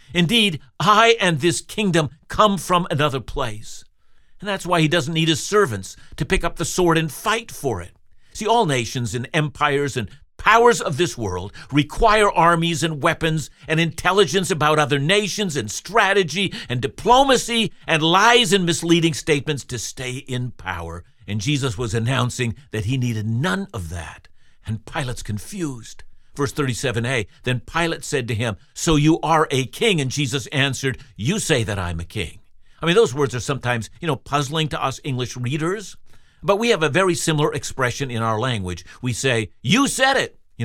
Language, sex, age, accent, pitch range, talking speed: English, male, 50-69, American, 110-165 Hz, 180 wpm